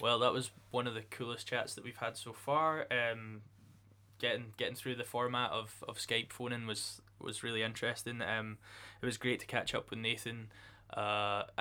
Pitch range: 105-120 Hz